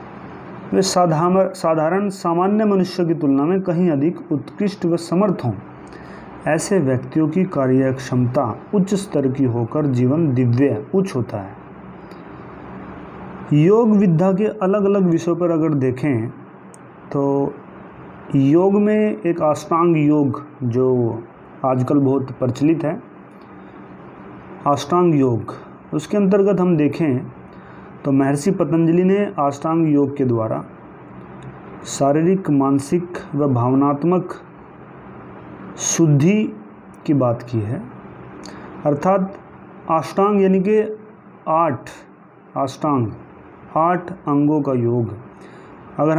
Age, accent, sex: 30-49, native, male